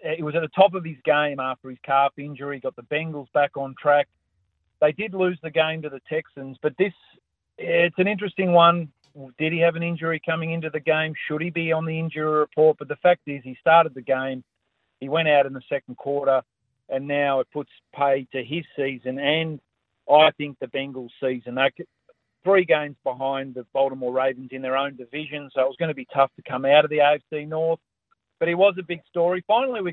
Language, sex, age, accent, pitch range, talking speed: English, male, 40-59, Australian, 135-165 Hz, 220 wpm